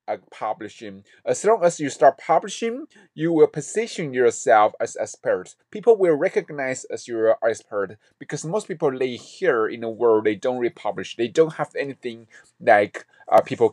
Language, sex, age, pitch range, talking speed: English, male, 30-49, 115-160 Hz, 160 wpm